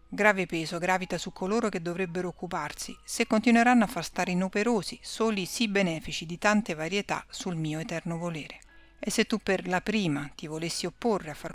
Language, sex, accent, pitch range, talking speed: Italian, female, native, 170-215 Hz, 180 wpm